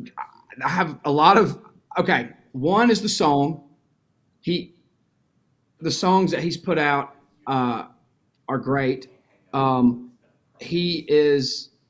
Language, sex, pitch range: English, male, 130-165 Hz